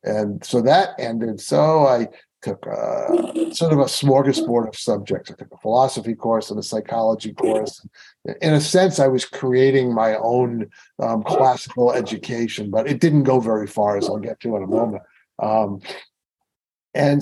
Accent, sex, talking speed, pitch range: American, male, 170 wpm, 110-145 Hz